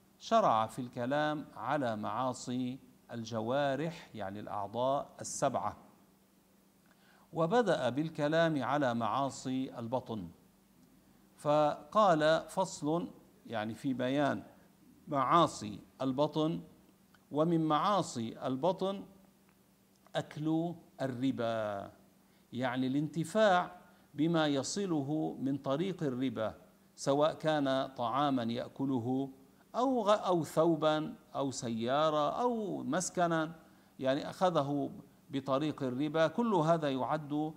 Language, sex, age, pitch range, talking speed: Arabic, male, 50-69, 130-175 Hz, 80 wpm